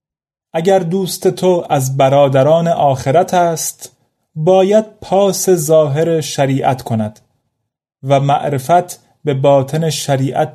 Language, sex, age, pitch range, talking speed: Persian, male, 30-49, 125-155 Hz, 95 wpm